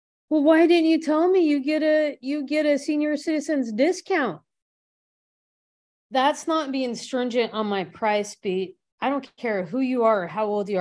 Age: 30-49